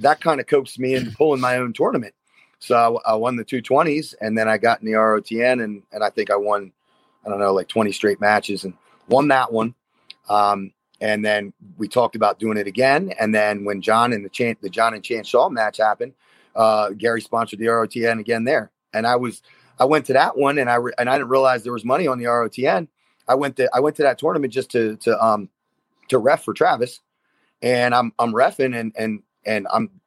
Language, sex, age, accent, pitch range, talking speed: English, male, 30-49, American, 110-125 Hz, 230 wpm